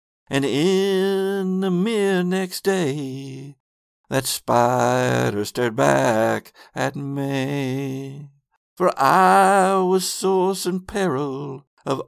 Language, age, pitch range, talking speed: English, 60-79, 120-185 Hz, 95 wpm